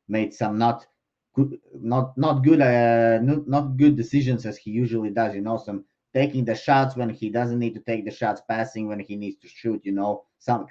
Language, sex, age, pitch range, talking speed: English, male, 30-49, 110-125 Hz, 215 wpm